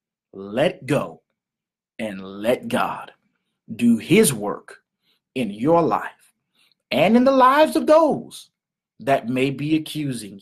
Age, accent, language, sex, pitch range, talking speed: 30-49, American, English, male, 115-175 Hz, 120 wpm